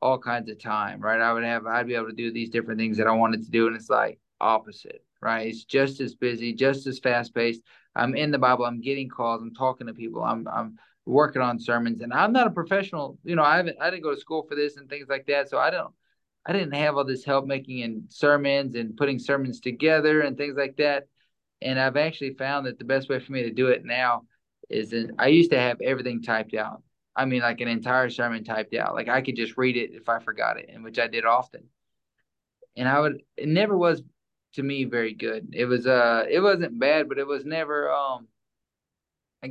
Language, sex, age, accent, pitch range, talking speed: English, male, 20-39, American, 115-140 Hz, 235 wpm